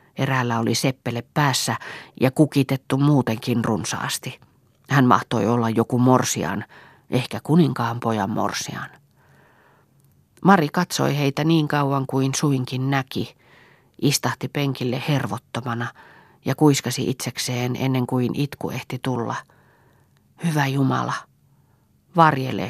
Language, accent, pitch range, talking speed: Finnish, native, 120-145 Hz, 105 wpm